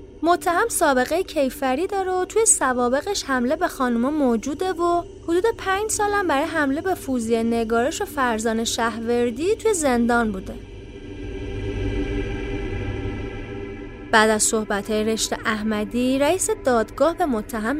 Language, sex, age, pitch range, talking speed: Persian, female, 30-49, 220-335 Hz, 115 wpm